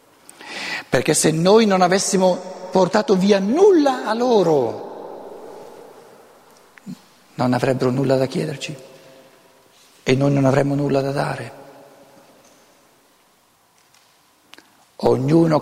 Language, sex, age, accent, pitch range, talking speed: Italian, male, 60-79, native, 125-165 Hz, 90 wpm